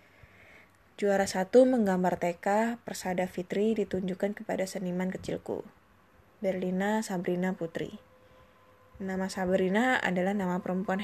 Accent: native